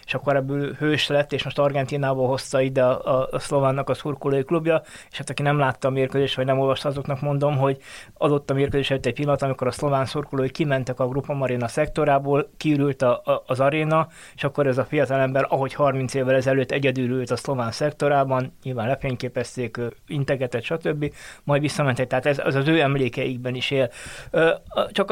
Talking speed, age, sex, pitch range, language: 180 wpm, 20-39, male, 135-150 Hz, Hungarian